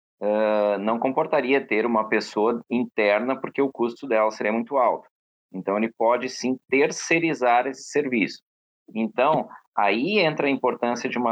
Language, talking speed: Portuguese, 150 wpm